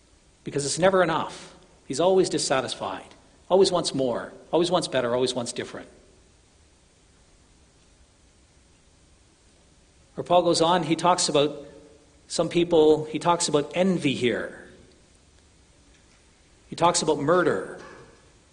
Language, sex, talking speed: English, male, 110 wpm